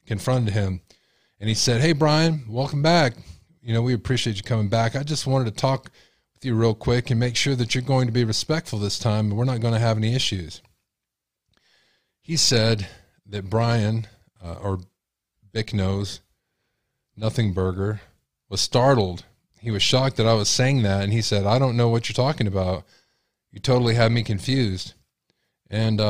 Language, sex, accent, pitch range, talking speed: English, male, American, 100-125 Hz, 185 wpm